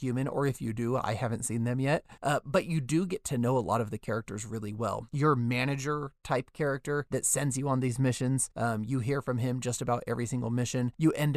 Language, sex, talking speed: English, male, 245 wpm